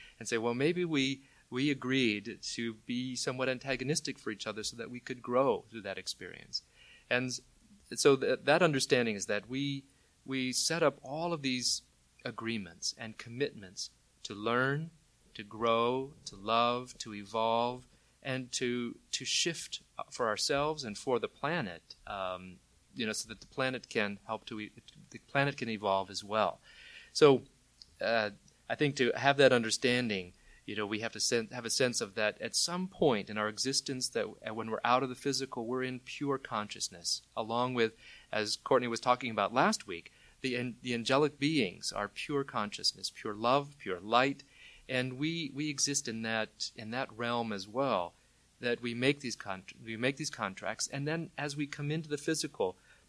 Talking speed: 180 wpm